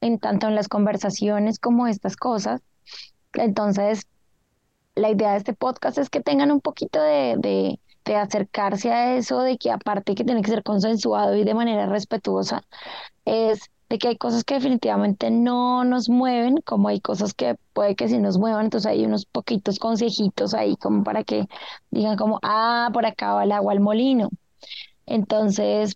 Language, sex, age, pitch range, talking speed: Spanish, female, 20-39, 205-245 Hz, 175 wpm